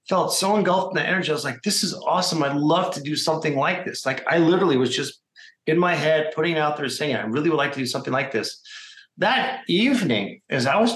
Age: 40-59